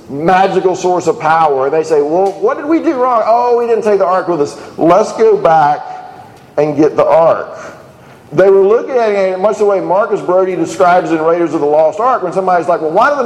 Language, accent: English, American